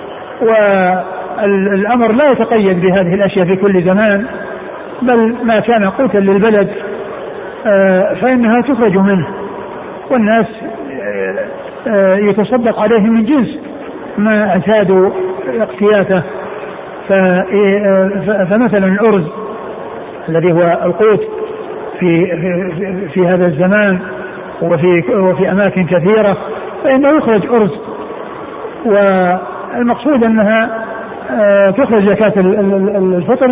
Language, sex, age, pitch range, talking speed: Arabic, male, 60-79, 190-225 Hz, 80 wpm